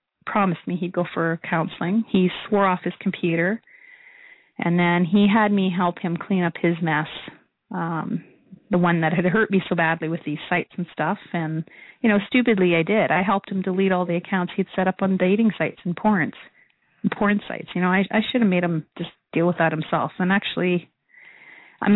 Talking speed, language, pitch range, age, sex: 205 wpm, English, 170-210 Hz, 30-49, female